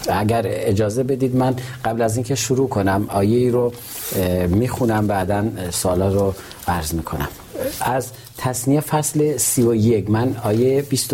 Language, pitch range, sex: Persian, 100-120 Hz, male